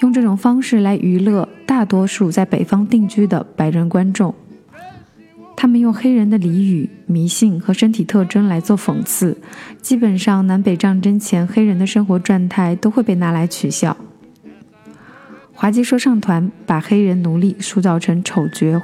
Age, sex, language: 20-39, female, Chinese